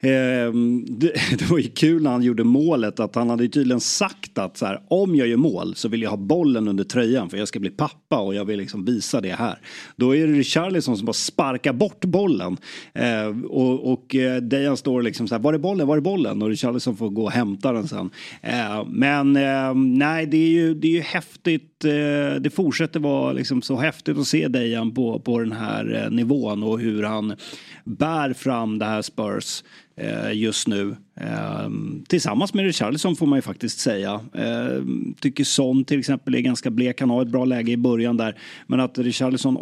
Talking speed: 190 wpm